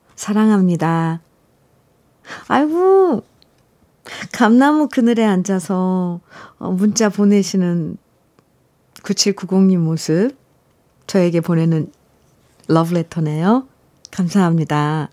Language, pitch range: Korean, 165-220 Hz